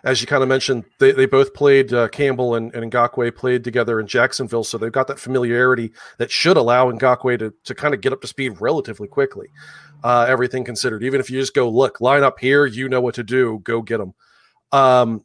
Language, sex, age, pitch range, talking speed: English, male, 40-59, 115-135 Hz, 230 wpm